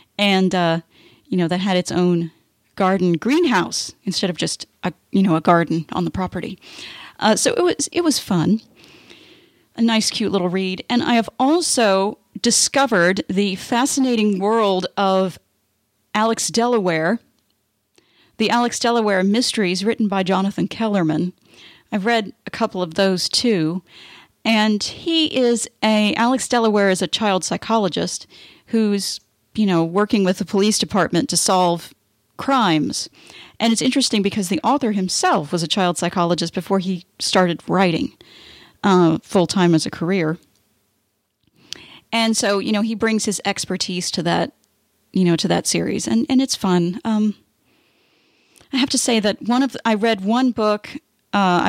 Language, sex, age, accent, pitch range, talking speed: English, female, 40-59, American, 175-225 Hz, 155 wpm